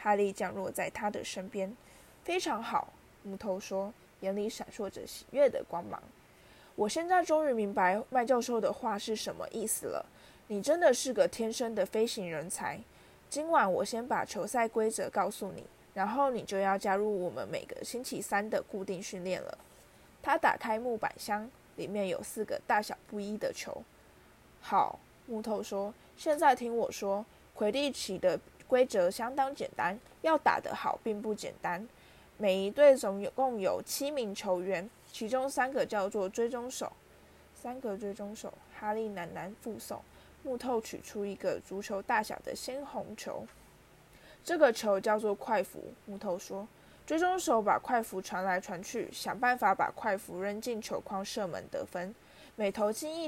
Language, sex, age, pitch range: Chinese, female, 20-39, 195-250 Hz